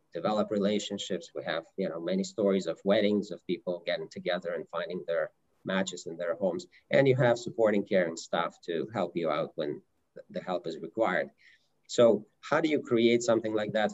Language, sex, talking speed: English, male, 195 wpm